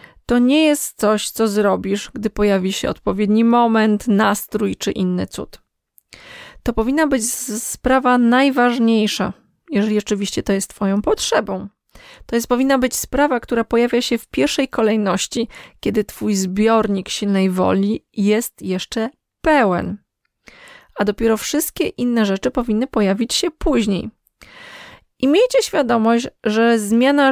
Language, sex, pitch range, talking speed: Polish, female, 210-255 Hz, 130 wpm